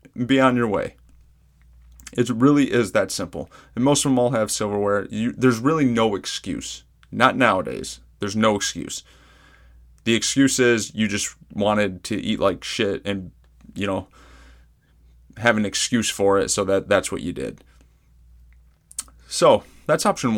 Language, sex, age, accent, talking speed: English, male, 30-49, American, 155 wpm